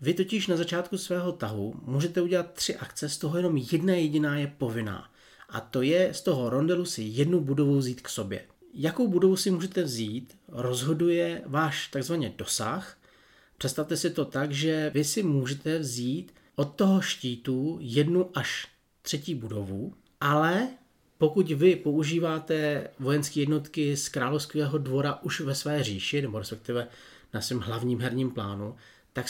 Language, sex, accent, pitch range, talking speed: Czech, male, native, 125-170 Hz, 155 wpm